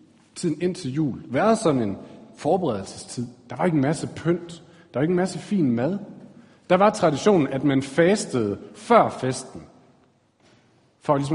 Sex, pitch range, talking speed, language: male, 115-170 Hz, 165 wpm, Danish